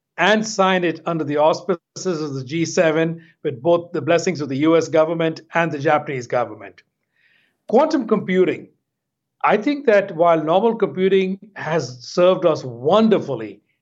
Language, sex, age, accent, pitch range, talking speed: English, male, 60-79, Indian, 155-195 Hz, 145 wpm